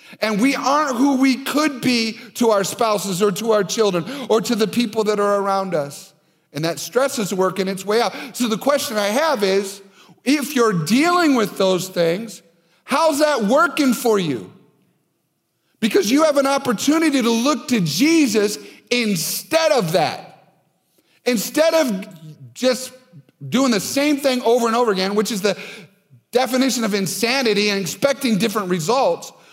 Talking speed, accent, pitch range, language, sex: 165 wpm, American, 185-265 Hz, English, male